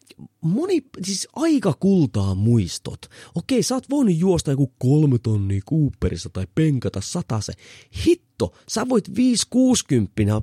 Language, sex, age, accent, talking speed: Finnish, male, 30-49, native, 125 wpm